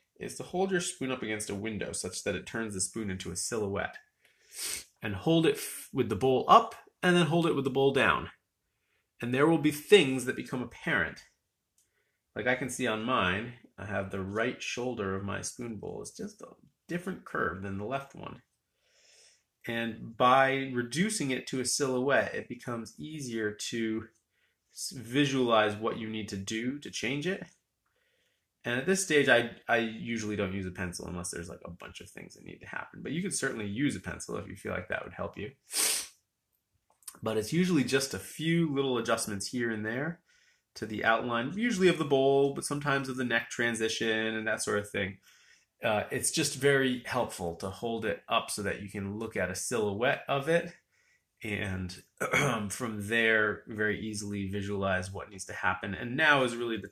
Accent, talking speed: American, 195 wpm